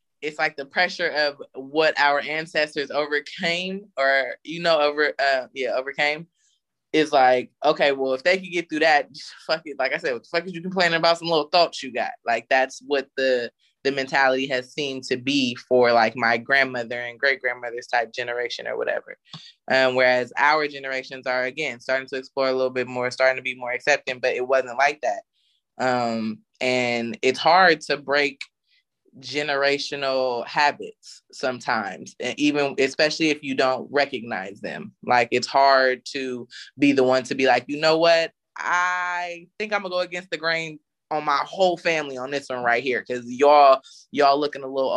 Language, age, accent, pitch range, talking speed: English, 20-39, American, 125-155 Hz, 190 wpm